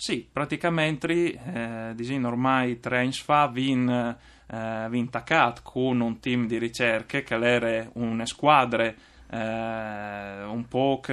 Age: 20-39